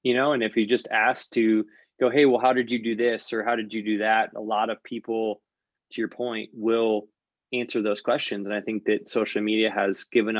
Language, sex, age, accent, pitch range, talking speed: English, male, 20-39, American, 110-120 Hz, 235 wpm